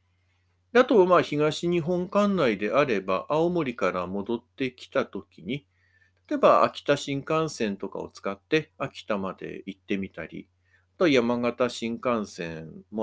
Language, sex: Japanese, male